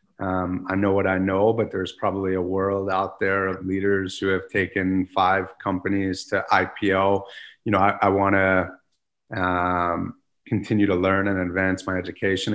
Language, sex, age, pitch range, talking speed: English, male, 30-49, 95-105 Hz, 165 wpm